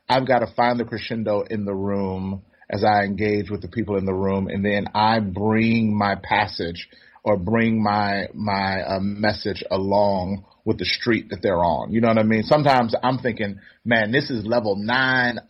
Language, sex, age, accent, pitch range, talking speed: English, male, 30-49, American, 105-150 Hz, 195 wpm